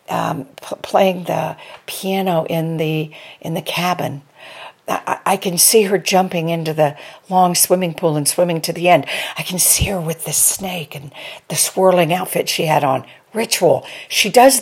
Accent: American